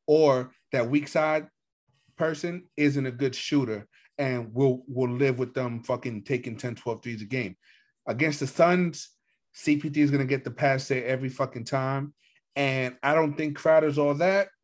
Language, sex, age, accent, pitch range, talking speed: English, male, 30-49, American, 115-145 Hz, 175 wpm